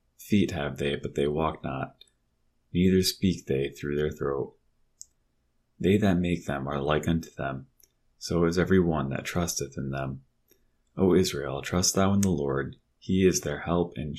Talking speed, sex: 175 wpm, male